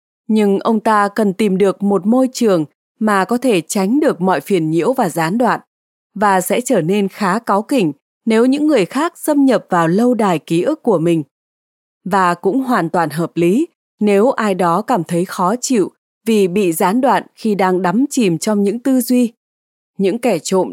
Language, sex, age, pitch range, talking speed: Vietnamese, female, 20-39, 180-240 Hz, 195 wpm